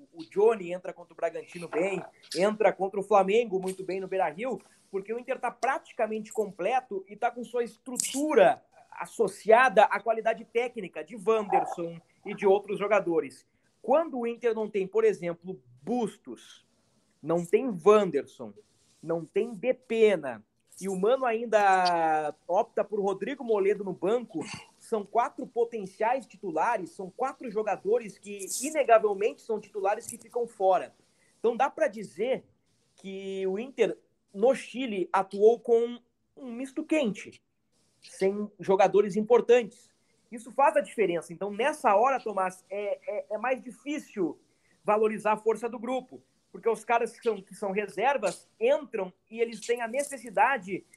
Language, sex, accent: Portuguese, male, Brazilian